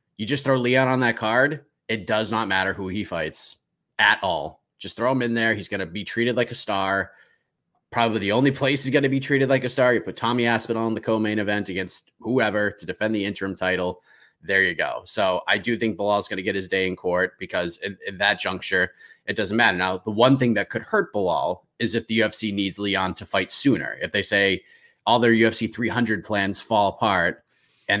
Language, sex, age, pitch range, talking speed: English, male, 30-49, 100-120 Hz, 230 wpm